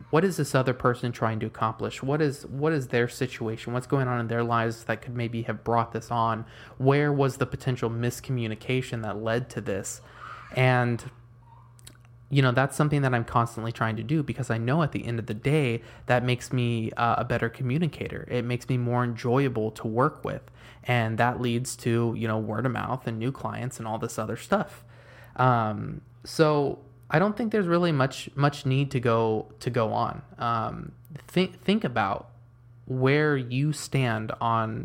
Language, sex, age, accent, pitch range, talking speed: English, male, 20-39, American, 115-130 Hz, 190 wpm